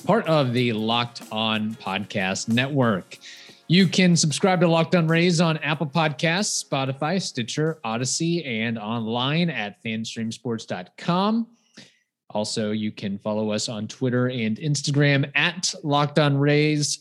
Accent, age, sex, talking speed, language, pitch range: American, 30-49, male, 125 wpm, English, 110-150 Hz